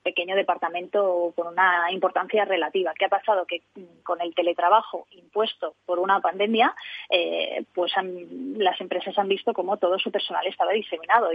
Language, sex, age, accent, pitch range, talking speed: Spanish, female, 20-39, Spanish, 185-235 Hz, 155 wpm